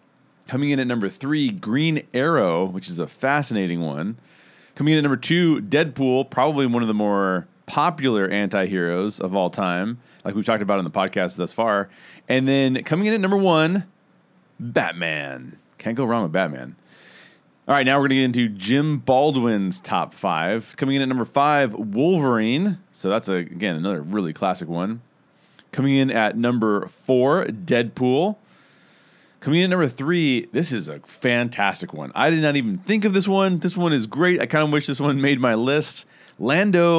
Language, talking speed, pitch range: English, 185 wpm, 115-155 Hz